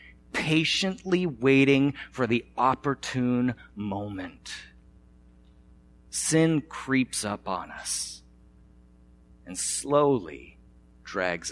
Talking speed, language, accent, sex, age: 75 wpm, English, American, male, 30-49